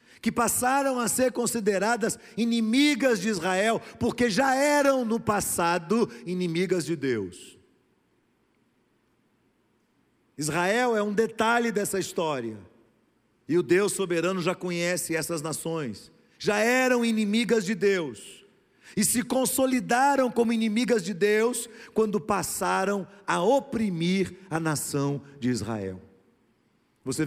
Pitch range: 170-235 Hz